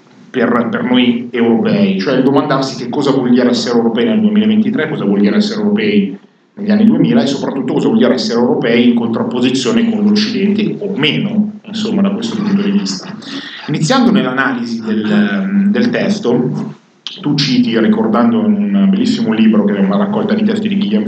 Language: Italian